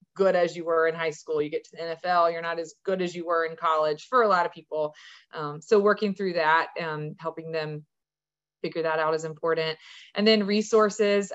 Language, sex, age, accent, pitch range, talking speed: English, female, 20-39, American, 160-195 Hz, 220 wpm